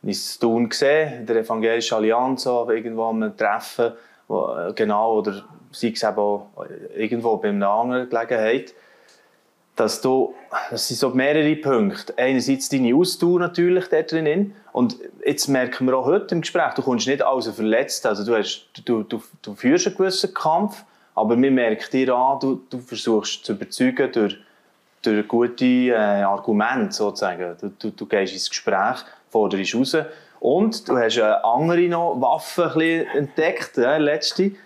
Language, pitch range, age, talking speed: German, 115-165 Hz, 20-39, 155 wpm